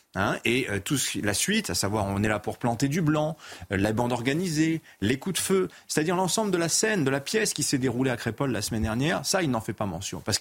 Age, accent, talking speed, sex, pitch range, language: 30-49, French, 270 wpm, male, 105-140 Hz, French